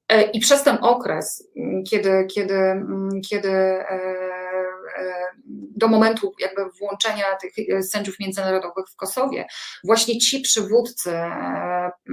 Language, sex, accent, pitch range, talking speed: Polish, female, native, 190-220 Hz, 90 wpm